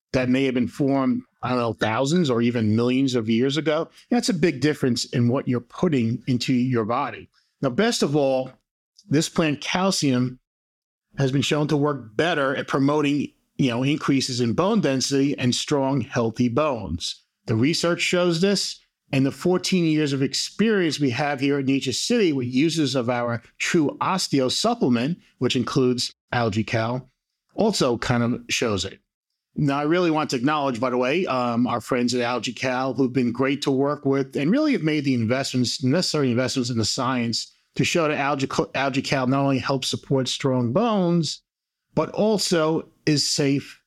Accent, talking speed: American, 175 wpm